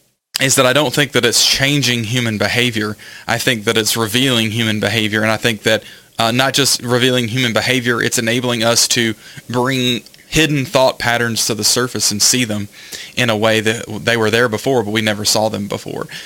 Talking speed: 205 wpm